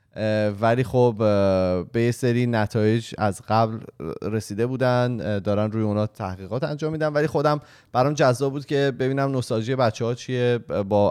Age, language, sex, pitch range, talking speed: 20-39, Persian, male, 105-135 Hz, 150 wpm